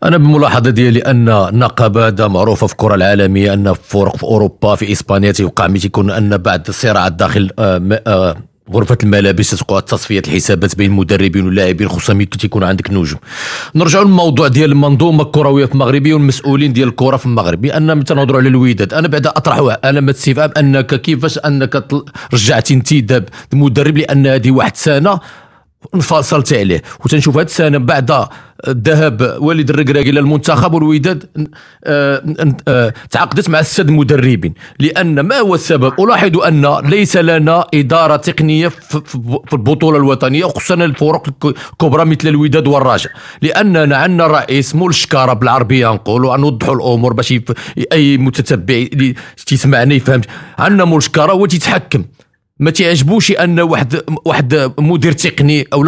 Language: French